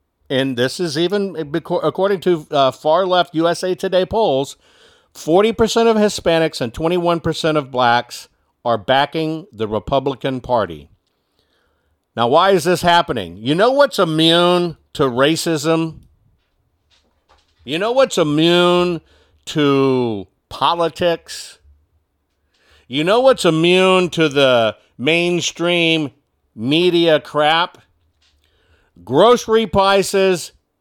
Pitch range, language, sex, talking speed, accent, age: 120-185 Hz, English, male, 100 wpm, American, 50-69